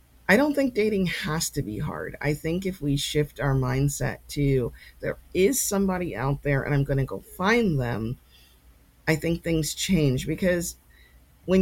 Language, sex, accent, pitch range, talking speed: English, female, American, 130-165 Hz, 175 wpm